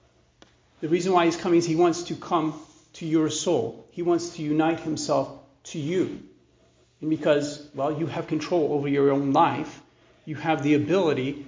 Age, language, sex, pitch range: 40-59, English, male, 145-165 Hz